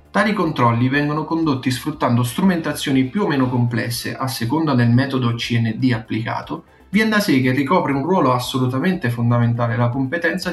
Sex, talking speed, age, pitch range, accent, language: male, 155 wpm, 30-49, 120-160 Hz, native, Italian